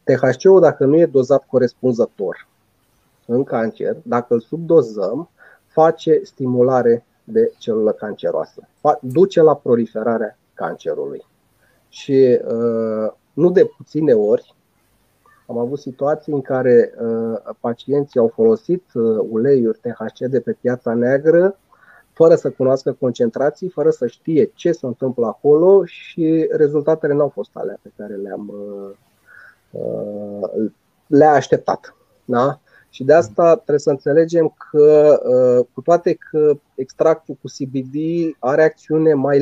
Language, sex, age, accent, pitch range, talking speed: Romanian, male, 30-49, native, 125-165 Hz, 120 wpm